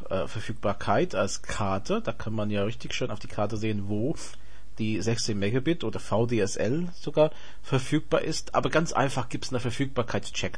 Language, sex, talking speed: German, male, 165 wpm